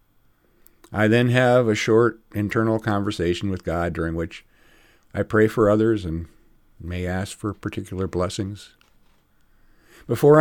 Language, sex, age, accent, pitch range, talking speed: English, male, 50-69, American, 95-125 Hz, 125 wpm